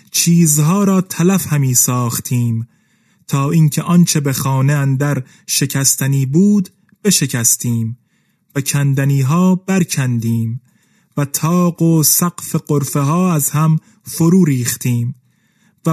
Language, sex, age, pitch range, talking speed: Persian, male, 30-49, 150-185 Hz, 110 wpm